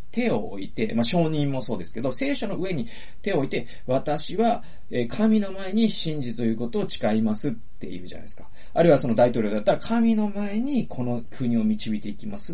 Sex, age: male, 40-59